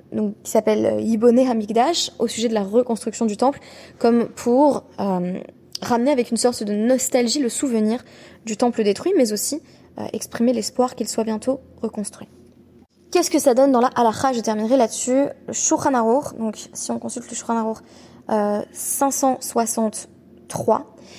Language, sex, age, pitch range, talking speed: French, female, 20-39, 220-255 Hz, 155 wpm